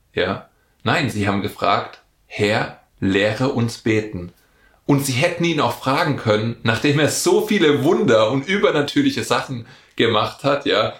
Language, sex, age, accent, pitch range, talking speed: German, male, 30-49, German, 105-130 Hz, 145 wpm